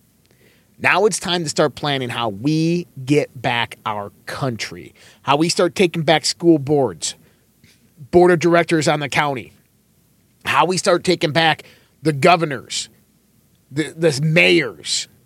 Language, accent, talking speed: English, American, 140 wpm